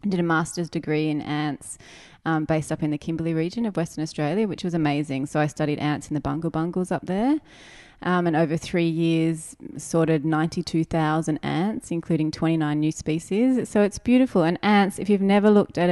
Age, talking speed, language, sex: 20-39, 190 wpm, English, female